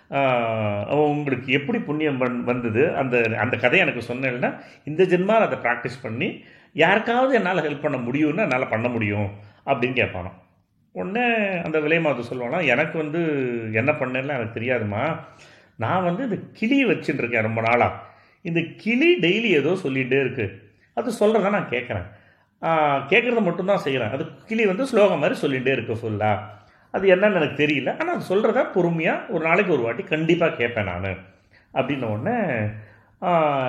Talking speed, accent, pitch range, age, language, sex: 145 wpm, native, 110-155 Hz, 40-59, Tamil, male